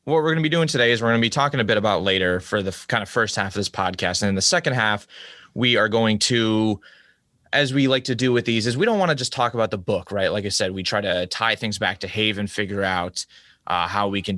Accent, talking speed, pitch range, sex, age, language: American, 290 wpm, 100-125 Hz, male, 20-39, English